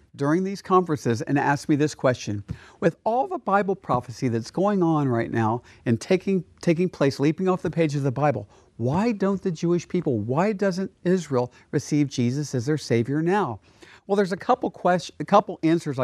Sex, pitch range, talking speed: male, 120-185 Hz, 190 wpm